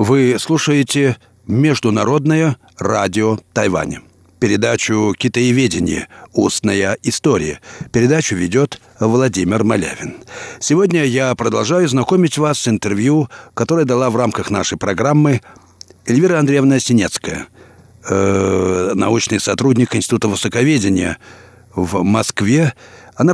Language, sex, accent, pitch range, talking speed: Russian, male, native, 105-130 Hz, 95 wpm